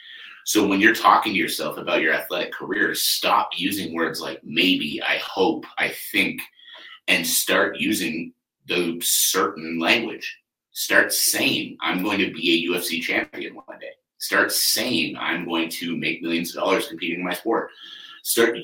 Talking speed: 160 wpm